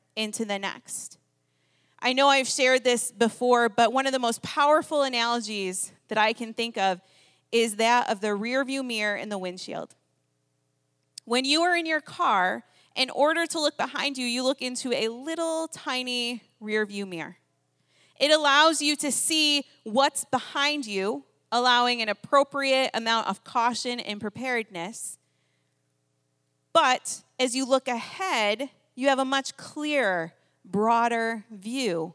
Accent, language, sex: American, English, female